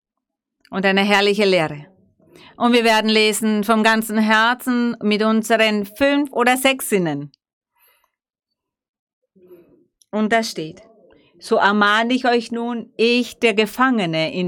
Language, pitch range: German, 180-230 Hz